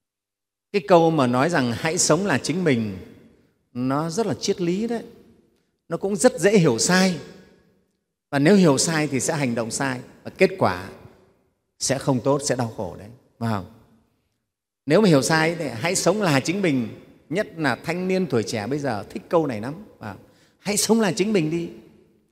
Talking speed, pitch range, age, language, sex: 190 wpm, 140-190 Hz, 30-49, Vietnamese, male